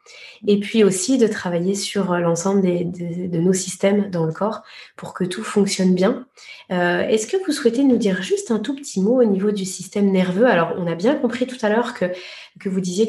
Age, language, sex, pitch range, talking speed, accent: 20-39, French, female, 190-240 Hz, 225 wpm, French